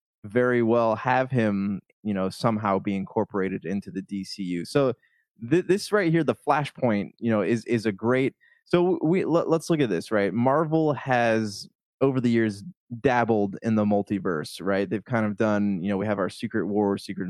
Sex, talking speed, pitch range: male, 190 wpm, 100-120 Hz